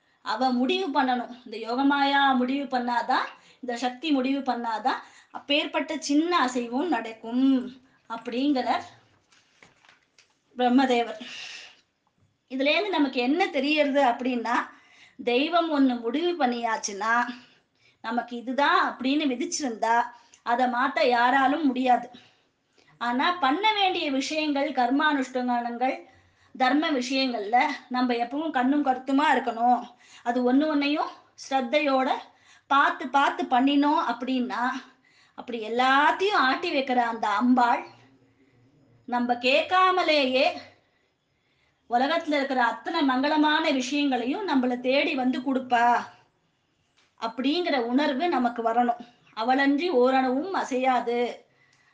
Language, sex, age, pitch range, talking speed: Tamil, female, 20-39, 240-285 Hz, 90 wpm